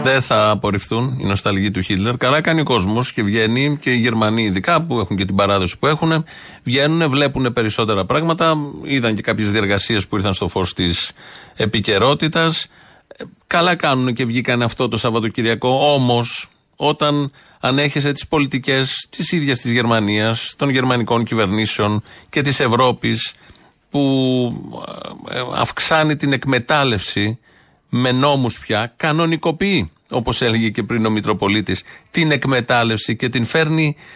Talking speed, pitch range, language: 140 wpm, 110-140 Hz, Greek